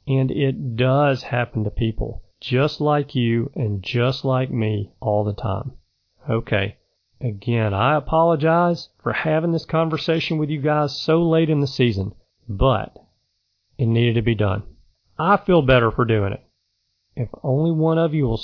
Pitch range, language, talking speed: 110-145 Hz, English, 165 wpm